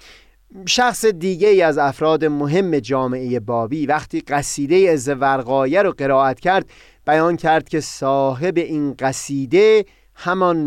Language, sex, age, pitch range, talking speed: Persian, male, 30-49, 135-180 Hz, 120 wpm